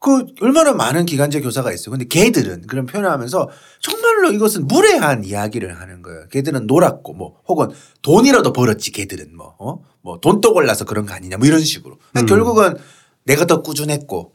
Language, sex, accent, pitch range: Korean, male, native, 135-190 Hz